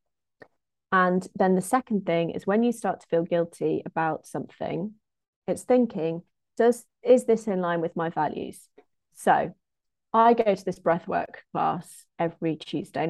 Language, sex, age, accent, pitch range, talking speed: English, female, 30-49, British, 160-205 Hz, 150 wpm